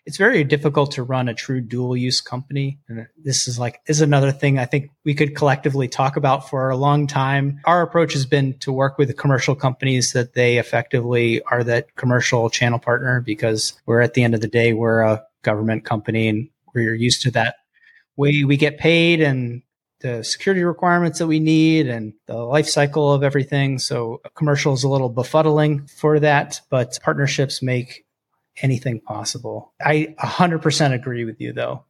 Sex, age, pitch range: male, 30-49, 120-145 Hz